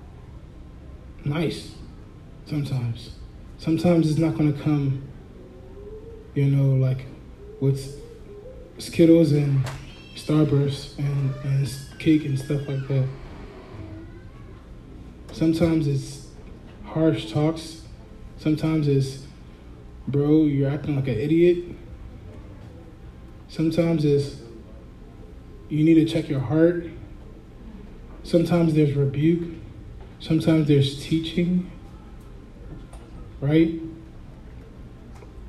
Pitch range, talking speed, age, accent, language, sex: 105-155 Hz, 80 wpm, 20-39, American, English, male